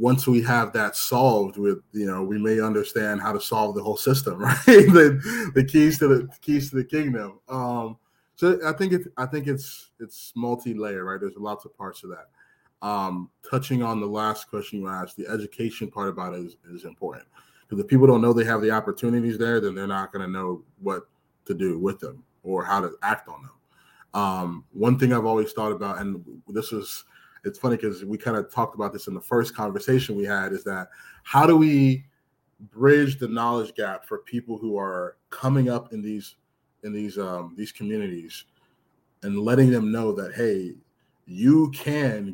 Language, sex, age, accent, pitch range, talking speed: English, male, 20-39, American, 105-130 Hz, 205 wpm